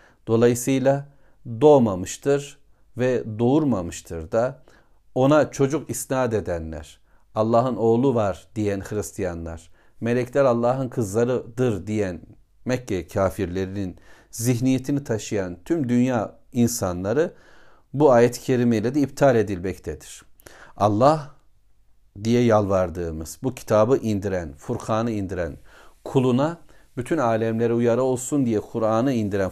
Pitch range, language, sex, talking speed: 100-130 Hz, Turkish, male, 100 wpm